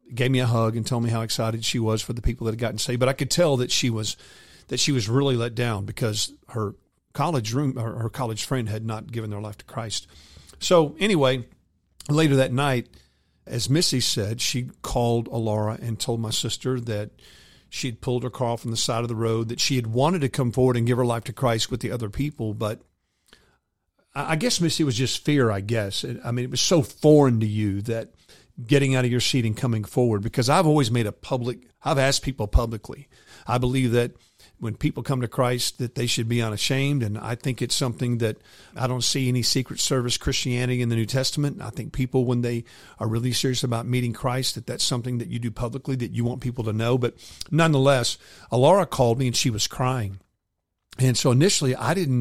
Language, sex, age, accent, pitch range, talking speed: English, male, 50-69, American, 115-130 Hz, 225 wpm